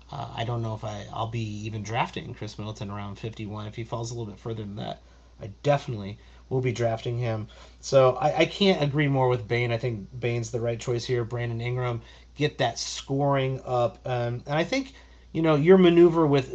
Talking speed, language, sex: 210 wpm, English, male